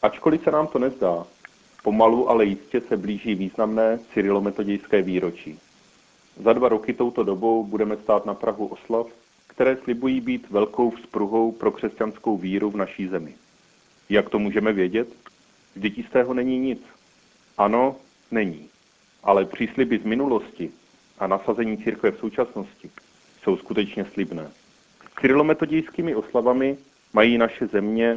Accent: native